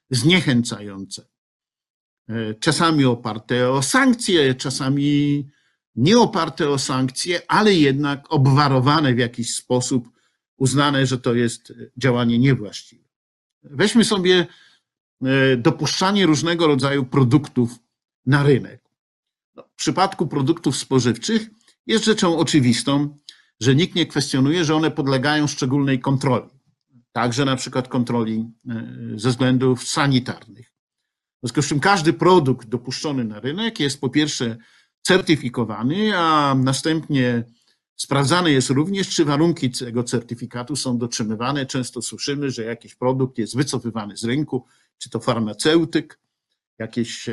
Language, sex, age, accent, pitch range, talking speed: Polish, male, 50-69, native, 120-150 Hz, 115 wpm